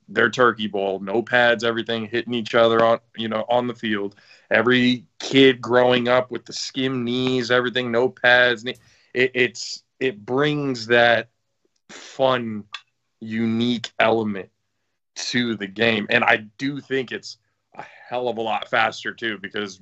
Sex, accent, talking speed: male, American, 150 wpm